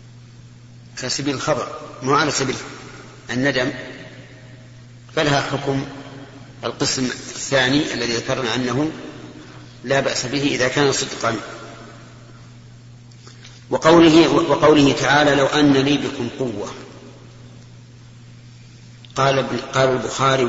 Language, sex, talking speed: Arabic, male, 90 wpm